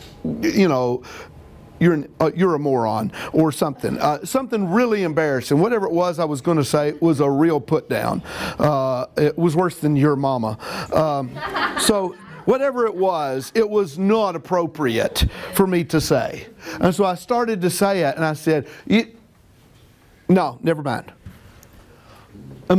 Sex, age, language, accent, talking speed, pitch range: male, 50-69, English, American, 165 wpm, 150-245 Hz